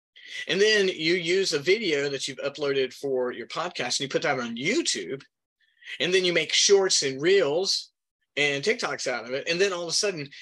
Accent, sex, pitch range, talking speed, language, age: American, male, 140-195 Hz, 210 wpm, English, 30-49